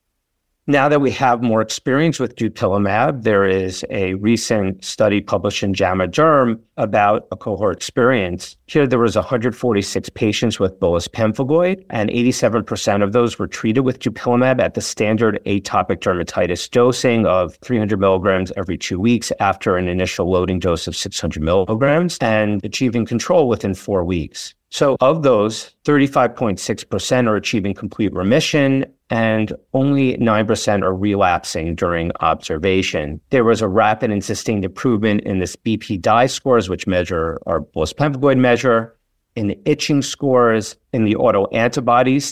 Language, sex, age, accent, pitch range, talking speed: English, male, 50-69, American, 100-125 Hz, 145 wpm